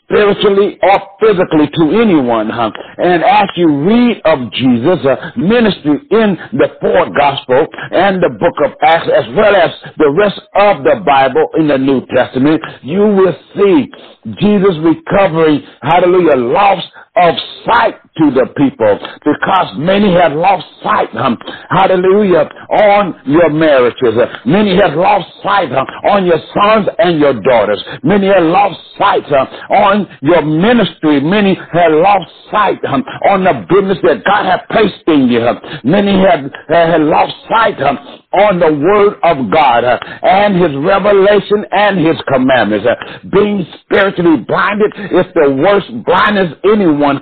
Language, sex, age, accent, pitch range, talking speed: English, male, 60-79, American, 160-210 Hz, 150 wpm